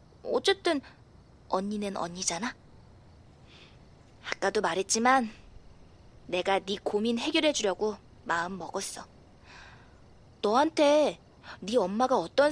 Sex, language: female, Korean